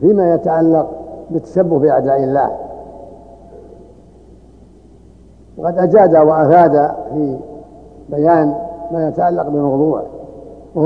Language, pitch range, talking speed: Arabic, 160-185 Hz, 75 wpm